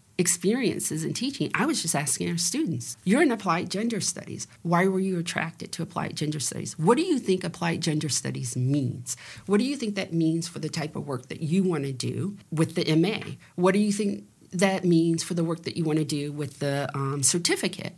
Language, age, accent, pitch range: English, 40-59, American, 135-180 Hz